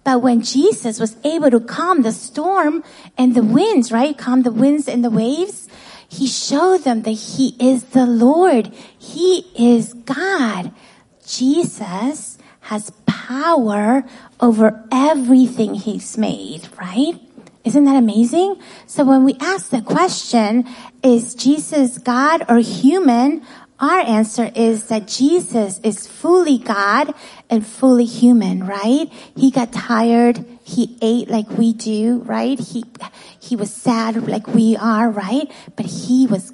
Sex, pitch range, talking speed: female, 225-275 Hz, 140 wpm